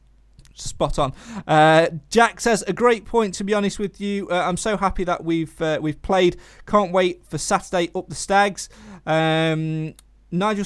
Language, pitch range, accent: English, 155-190 Hz, British